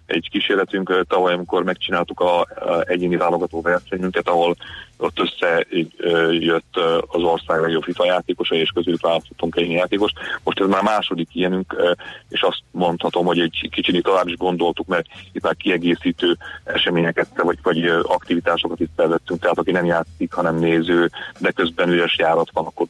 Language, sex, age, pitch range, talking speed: Hungarian, male, 30-49, 85-90 Hz, 155 wpm